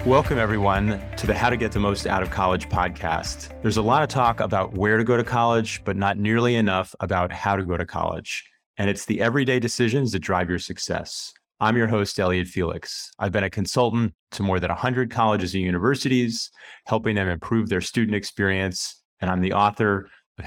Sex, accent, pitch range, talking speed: male, American, 90-110 Hz, 205 wpm